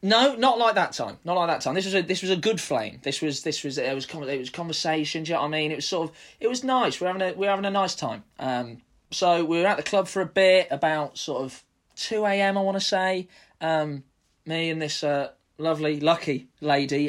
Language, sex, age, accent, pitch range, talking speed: English, male, 20-39, British, 140-195 Hz, 255 wpm